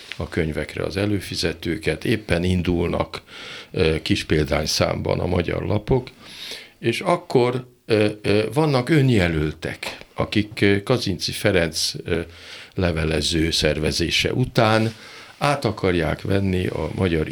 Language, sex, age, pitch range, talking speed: Hungarian, male, 60-79, 90-115 Hz, 90 wpm